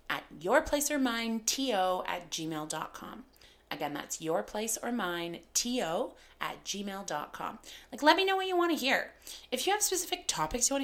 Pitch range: 185-295 Hz